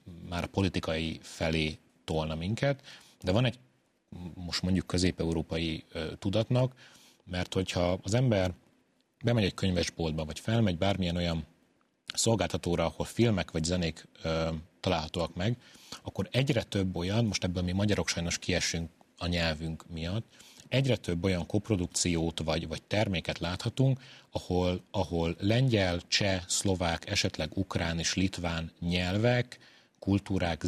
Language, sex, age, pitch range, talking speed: Hungarian, male, 30-49, 85-105 Hz, 125 wpm